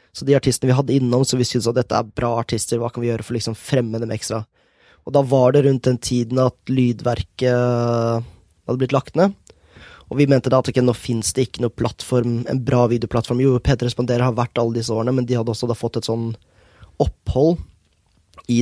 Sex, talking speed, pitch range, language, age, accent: male, 210 wpm, 115-130 Hz, English, 20-39, Swedish